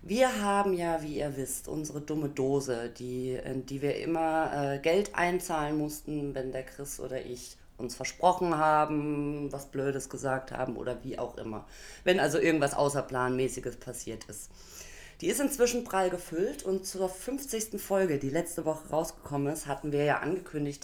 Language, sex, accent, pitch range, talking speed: German, female, German, 140-200 Hz, 165 wpm